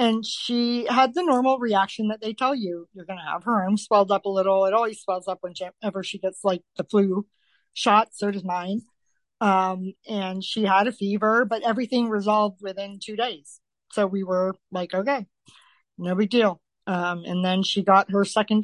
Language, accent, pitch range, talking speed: English, American, 190-220 Hz, 195 wpm